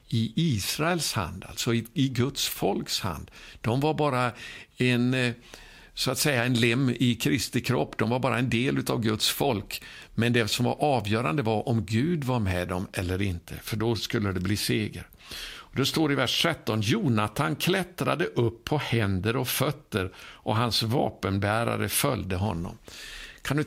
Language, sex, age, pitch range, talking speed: Swedish, male, 60-79, 105-130 Hz, 170 wpm